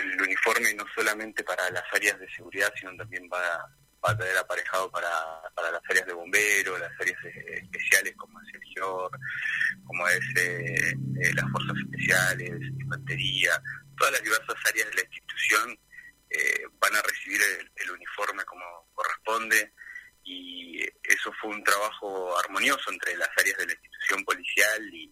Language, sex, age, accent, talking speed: Spanish, male, 30-49, Argentinian, 155 wpm